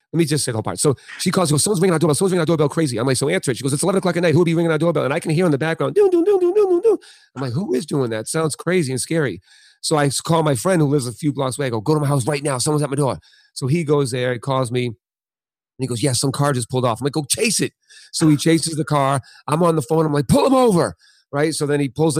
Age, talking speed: 30-49, 340 wpm